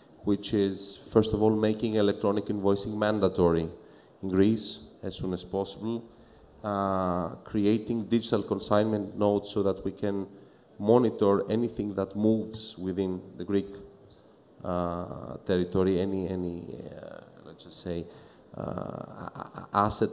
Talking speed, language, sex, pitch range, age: 120 wpm, English, male, 95-115 Hz, 30-49